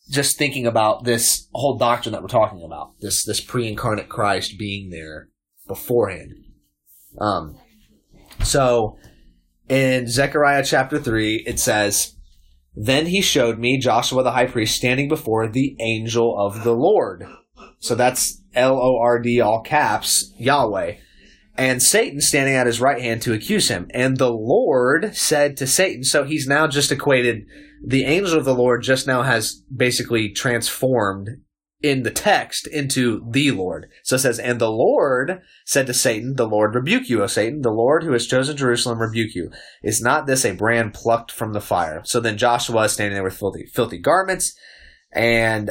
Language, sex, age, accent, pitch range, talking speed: English, male, 30-49, American, 110-135 Hz, 170 wpm